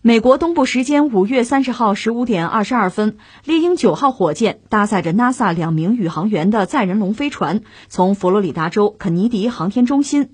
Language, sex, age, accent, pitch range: Chinese, female, 20-39, native, 175-255 Hz